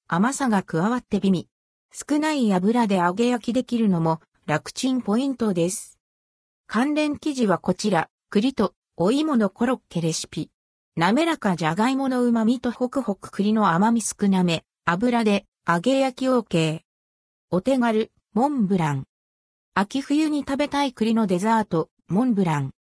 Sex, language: female, Japanese